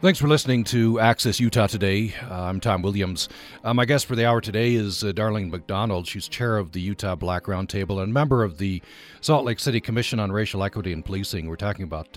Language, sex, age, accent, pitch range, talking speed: English, male, 40-59, American, 95-115 Hz, 220 wpm